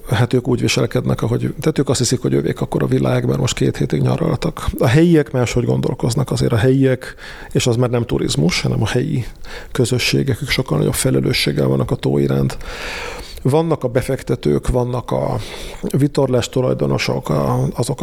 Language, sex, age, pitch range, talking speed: Hungarian, male, 40-59, 120-135 Hz, 155 wpm